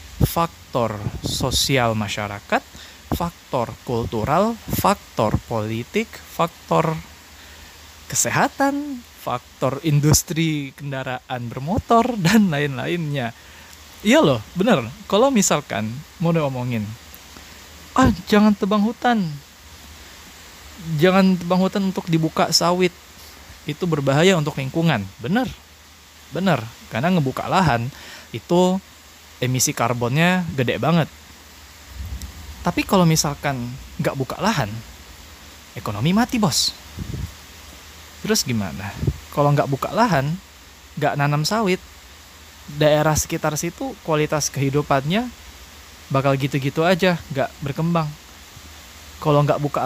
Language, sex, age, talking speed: Indonesian, male, 20-39, 95 wpm